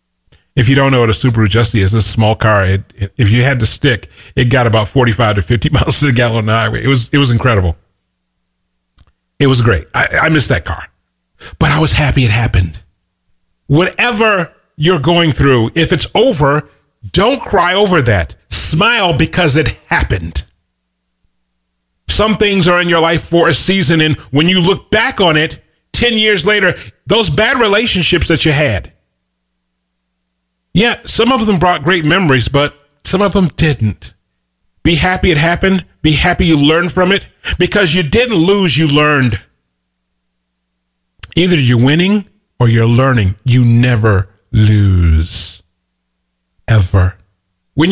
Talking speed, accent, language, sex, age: 160 wpm, American, English, male, 40-59